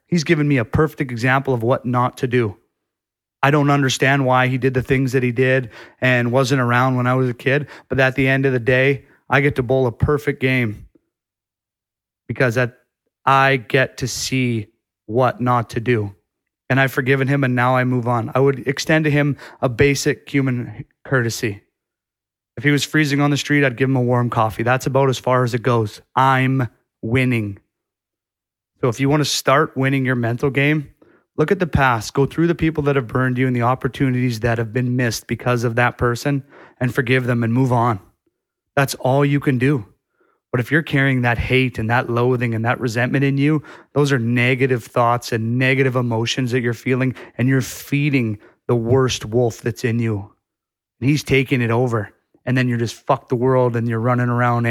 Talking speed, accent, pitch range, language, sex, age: 205 wpm, American, 120-135 Hz, English, male, 30-49